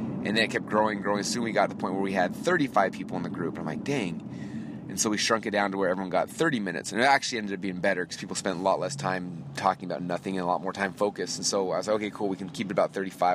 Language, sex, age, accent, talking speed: English, male, 30-49, American, 325 wpm